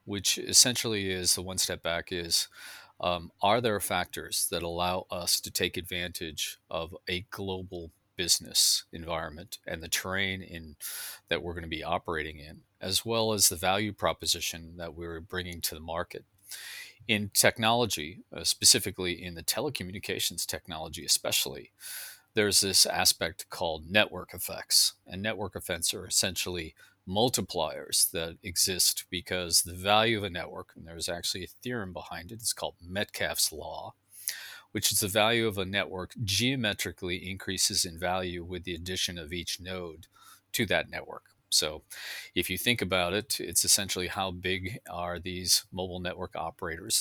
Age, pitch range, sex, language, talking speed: 40-59, 85-100 Hz, male, English, 155 wpm